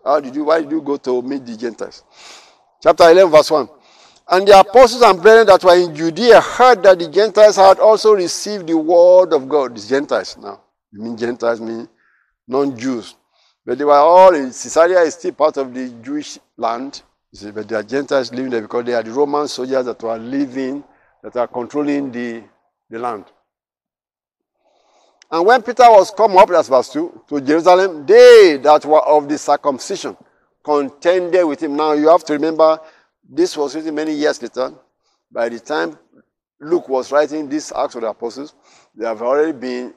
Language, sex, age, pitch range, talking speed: English, male, 50-69, 120-175 Hz, 185 wpm